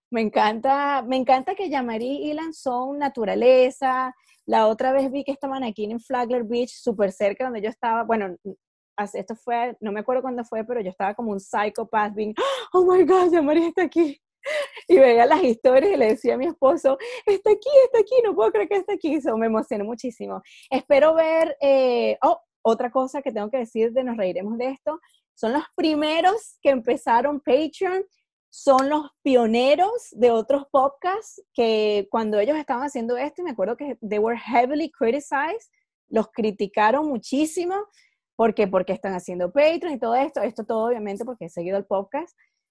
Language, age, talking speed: English, 30-49, 185 wpm